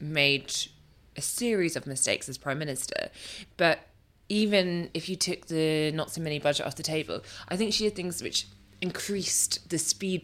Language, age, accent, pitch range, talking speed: English, 20-39, British, 140-165 Hz, 165 wpm